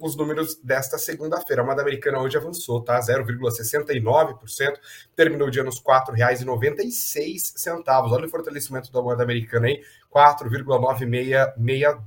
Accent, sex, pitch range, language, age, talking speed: Brazilian, male, 130-170 Hz, Portuguese, 30-49, 120 wpm